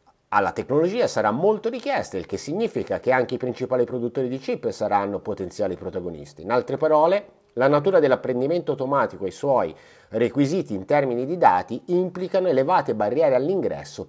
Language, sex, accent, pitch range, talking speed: Italian, male, native, 120-180 Hz, 160 wpm